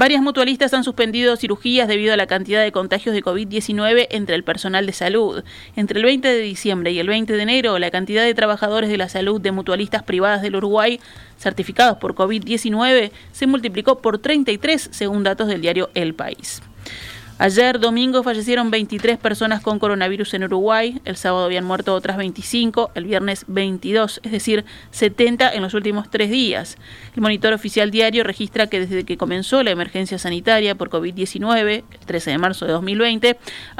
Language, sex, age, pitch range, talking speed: Spanish, female, 30-49, 185-225 Hz, 175 wpm